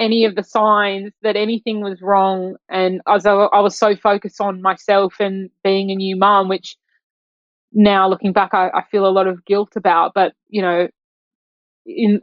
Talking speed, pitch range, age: 185 wpm, 185-215 Hz, 20-39